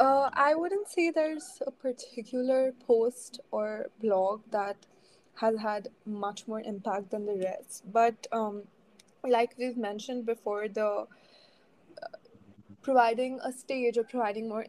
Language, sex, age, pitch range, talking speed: English, female, 20-39, 210-245 Hz, 135 wpm